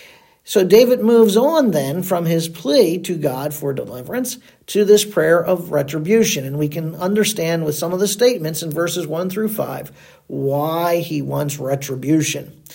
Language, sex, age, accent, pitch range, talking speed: English, male, 50-69, American, 160-235 Hz, 165 wpm